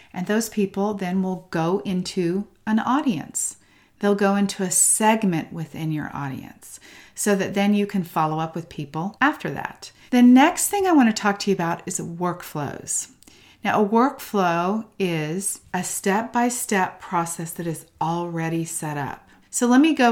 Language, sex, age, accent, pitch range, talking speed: English, female, 40-59, American, 170-215 Hz, 165 wpm